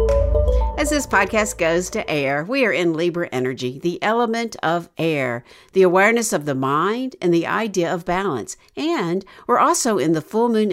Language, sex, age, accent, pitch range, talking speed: English, female, 60-79, American, 155-230 Hz, 180 wpm